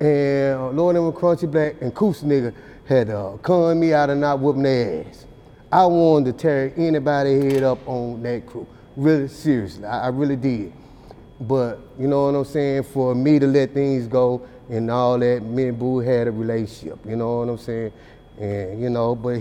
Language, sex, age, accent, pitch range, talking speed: English, male, 30-49, American, 125-170 Hz, 205 wpm